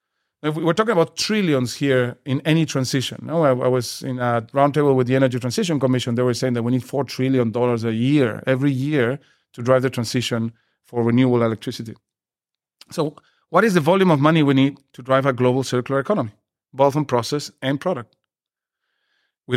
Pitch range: 125-155 Hz